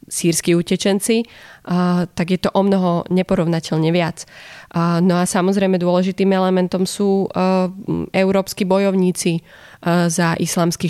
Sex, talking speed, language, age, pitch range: female, 105 wpm, Slovak, 20-39, 170-190 Hz